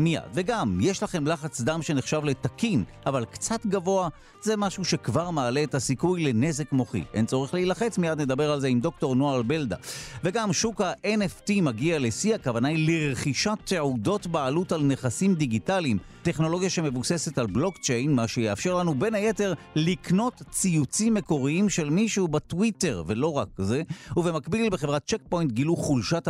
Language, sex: Hebrew, male